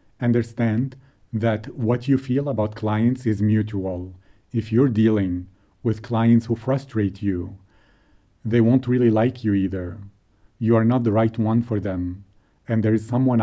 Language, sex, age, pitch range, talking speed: English, male, 40-59, 105-130 Hz, 155 wpm